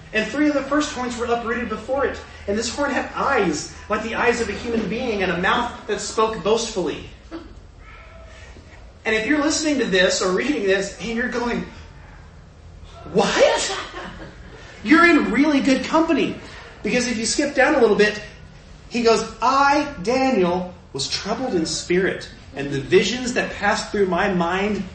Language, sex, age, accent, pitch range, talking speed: English, male, 30-49, American, 165-230 Hz, 170 wpm